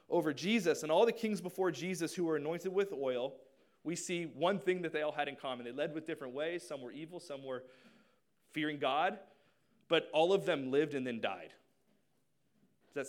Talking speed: 205 wpm